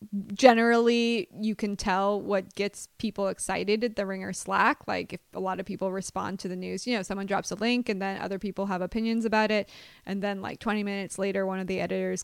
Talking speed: 225 wpm